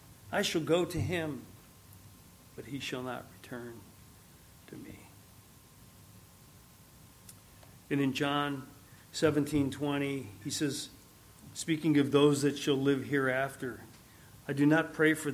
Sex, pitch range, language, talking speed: male, 130-155 Hz, English, 120 wpm